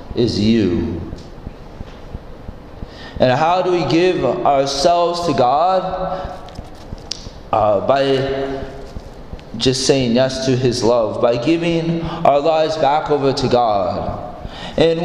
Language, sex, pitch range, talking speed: English, male, 140-195 Hz, 110 wpm